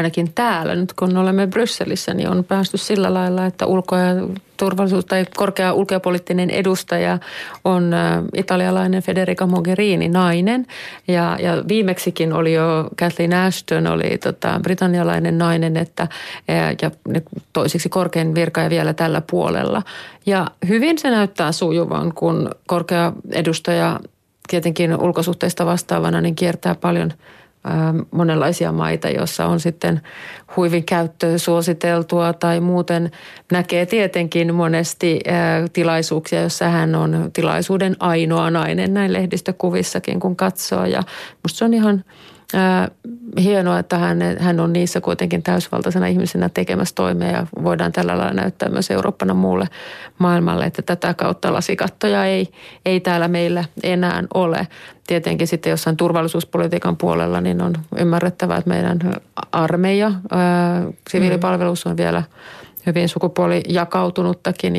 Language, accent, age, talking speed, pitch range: Finnish, native, 30-49, 120 wpm, 165-185 Hz